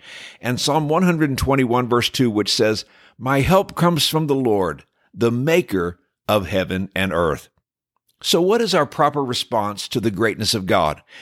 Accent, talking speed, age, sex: American, 160 wpm, 60-79, male